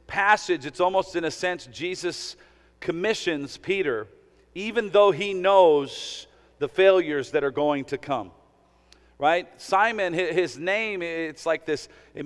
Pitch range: 155-200 Hz